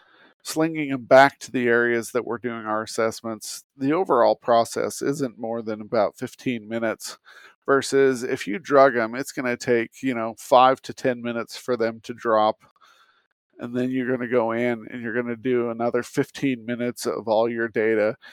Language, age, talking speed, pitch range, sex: English, 40-59, 190 wpm, 115-135 Hz, male